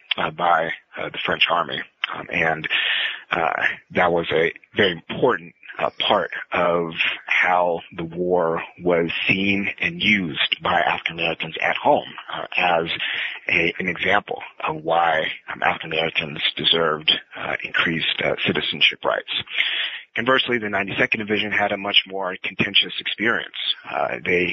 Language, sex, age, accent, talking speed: English, male, 30-49, American, 140 wpm